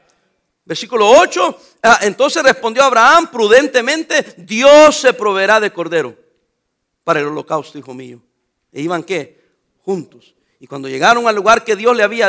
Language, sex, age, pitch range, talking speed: English, male, 50-69, 170-265 Hz, 140 wpm